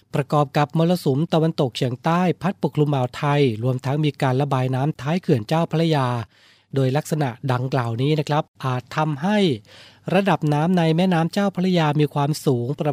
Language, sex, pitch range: Thai, male, 130-160 Hz